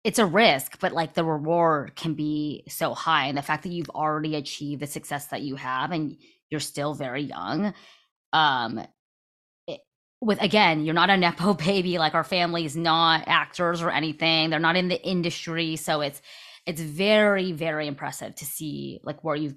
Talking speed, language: 185 wpm, English